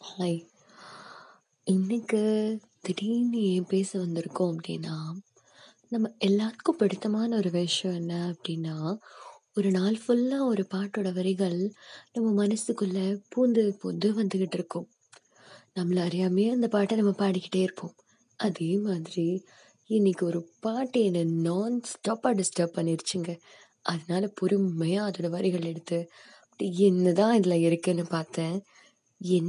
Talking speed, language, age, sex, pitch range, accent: 105 wpm, Tamil, 20-39, female, 170-210 Hz, native